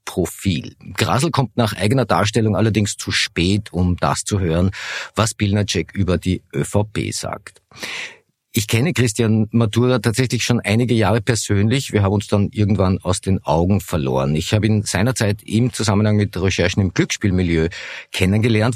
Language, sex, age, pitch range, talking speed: German, male, 50-69, 95-115 Hz, 150 wpm